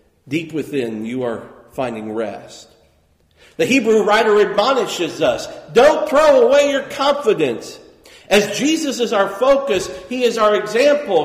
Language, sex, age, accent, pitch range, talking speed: English, male, 50-69, American, 180-235 Hz, 135 wpm